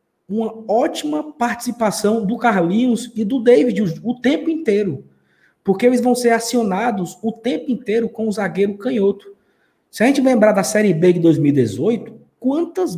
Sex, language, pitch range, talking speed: male, Portuguese, 170-225 Hz, 155 wpm